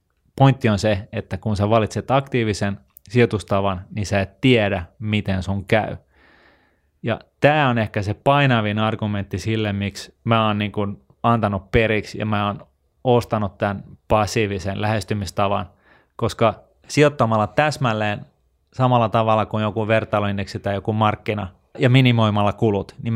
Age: 20-39